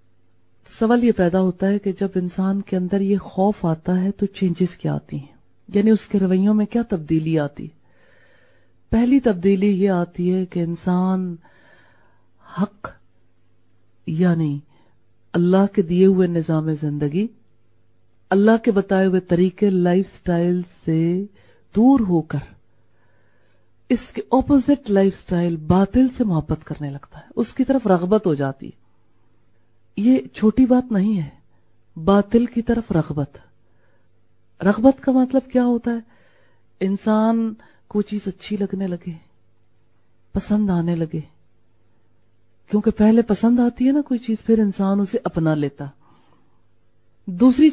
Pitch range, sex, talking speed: 135-215 Hz, female, 120 wpm